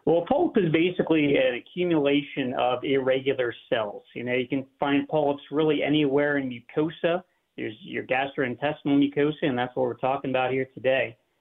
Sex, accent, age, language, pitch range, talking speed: male, American, 40-59, English, 140-185 Hz, 165 wpm